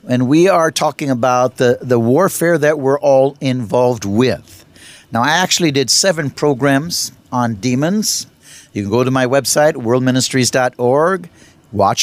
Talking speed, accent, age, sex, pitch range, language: 145 wpm, American, 60-79, male, 130-180 Hz, English